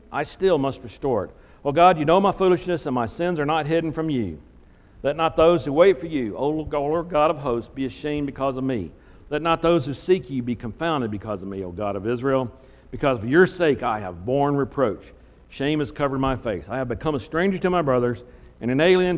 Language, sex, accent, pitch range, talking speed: English, male, American, 125-185 Hz, 235 wpm